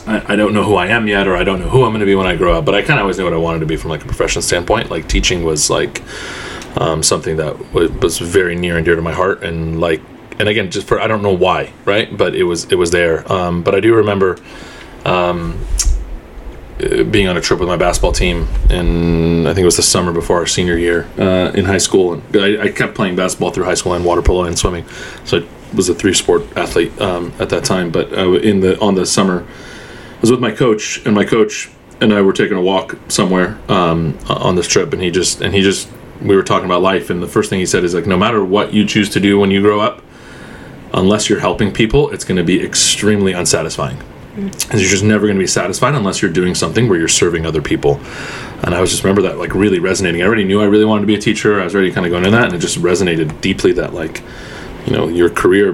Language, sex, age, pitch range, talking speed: English, male, 20-39, 85-105 Hz, 260 wpm